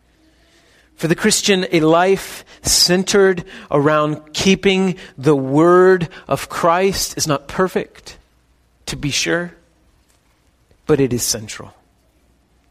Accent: American